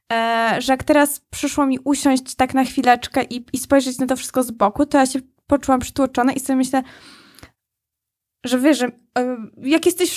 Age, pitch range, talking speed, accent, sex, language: 20-39, 255-305 Hz, 185 wpm, native, female, Polish